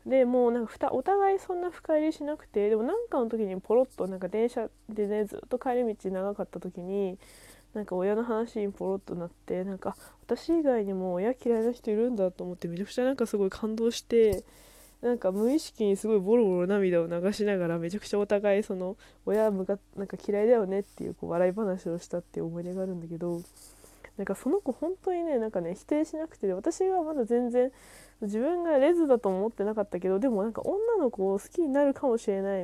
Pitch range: 190-255 Hz